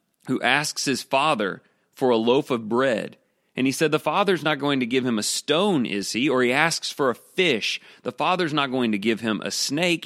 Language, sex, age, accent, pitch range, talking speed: English, male, 40-59, American, 120-165 Hz, 225 wpm